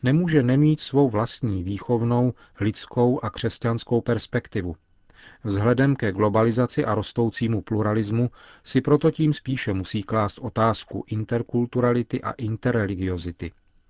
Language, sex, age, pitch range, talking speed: Czech, male, 40-59, 105-125 Hz, 110 wpm